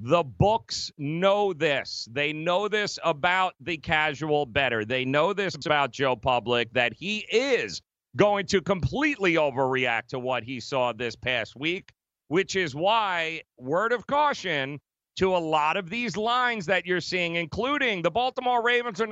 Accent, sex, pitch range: American, male, 140-205 Hz